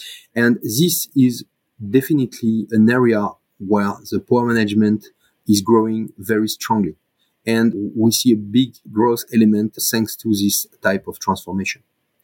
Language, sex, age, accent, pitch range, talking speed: English, male, 30-49, French, 110-130 Hz, 130 wpm